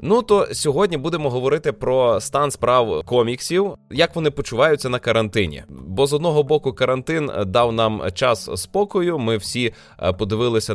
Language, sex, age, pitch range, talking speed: Ukrainian, male, 20-39, 95-125 Hz, 145 wpm